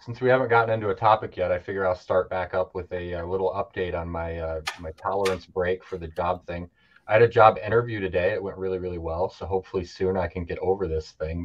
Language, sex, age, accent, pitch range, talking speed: English, male, 30-49, American, 90-110 Hz, 255 wpm